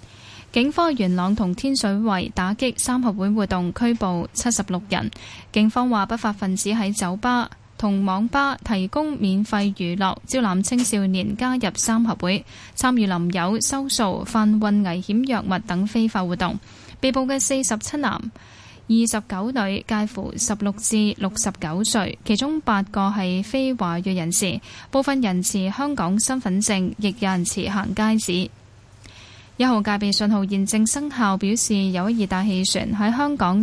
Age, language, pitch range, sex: 10-29, Chinese, 190-240 Hz, female